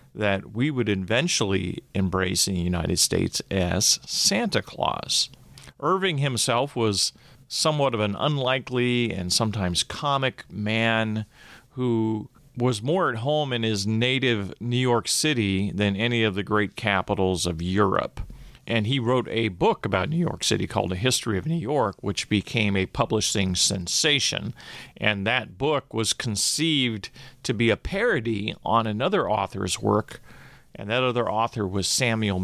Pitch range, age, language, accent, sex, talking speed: 100-125 Hz, 40-59, English, American, male, 150 wpm